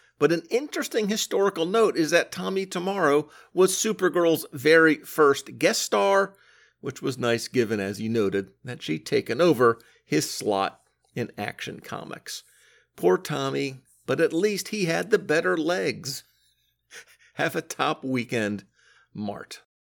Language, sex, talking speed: English, male, 140 wpm